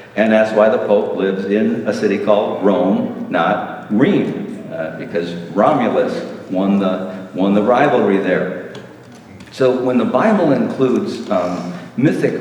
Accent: American